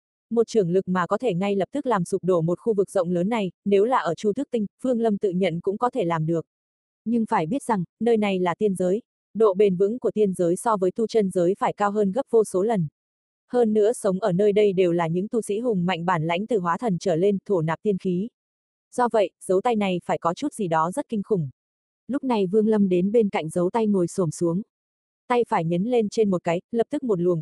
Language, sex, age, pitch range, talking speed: Vietnamese, female, 20-39, 180-225 Hz, 265 wpm